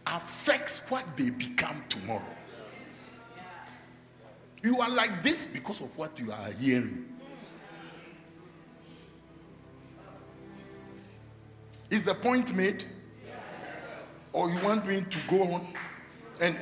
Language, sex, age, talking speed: English, male, 60-79, 100 wpm